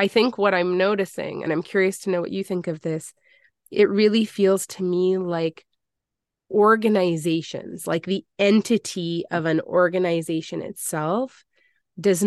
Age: 20-39